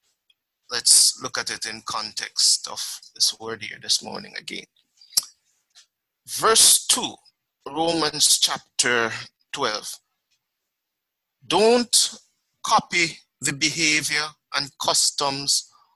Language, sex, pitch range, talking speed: English, male, 140-210 Hz, 90 wpm